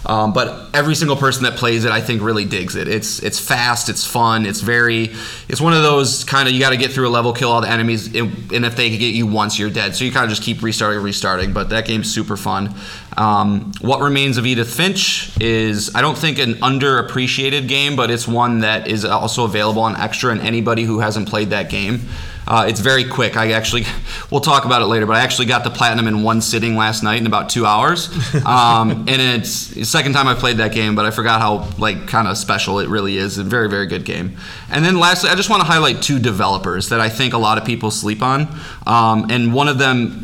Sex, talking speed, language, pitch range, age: male, 250 wpm, English, 110-130 Hz, 20-39